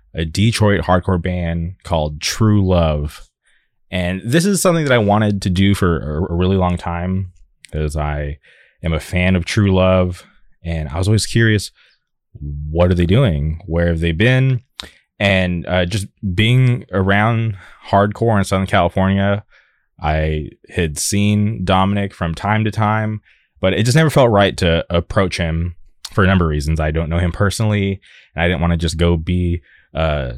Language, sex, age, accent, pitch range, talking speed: English, male, 20-39, American, 85-105 Hz, 170 wpm